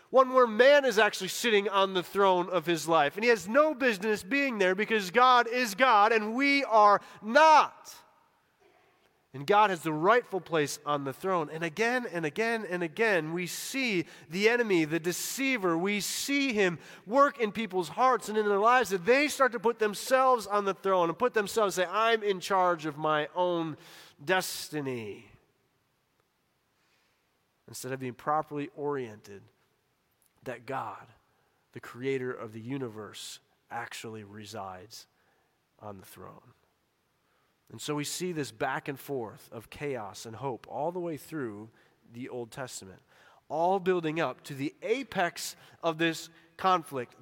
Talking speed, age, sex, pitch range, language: 160 wpm, 30-49, male, 145-220 Hz, English